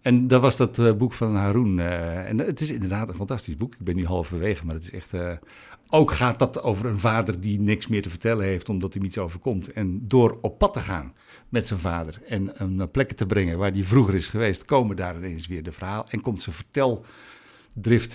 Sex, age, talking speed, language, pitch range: male, 60-79, 220 wpm, Dutch, 100-130 Hz